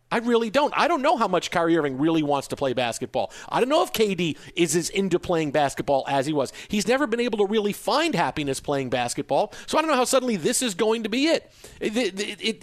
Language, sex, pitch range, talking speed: English, male, 150-205 Hz, 250 wpm